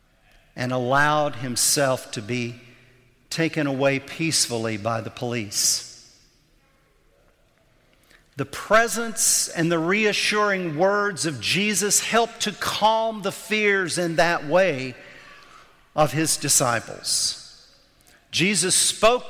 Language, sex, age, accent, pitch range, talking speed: English, male, 50-69, American, 140-195 Hz, 100 wpm